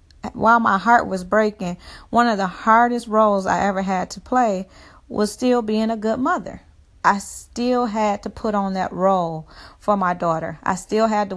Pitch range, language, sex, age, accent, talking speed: 185-215 Hz, English, female, 30-49, American, 190 wpm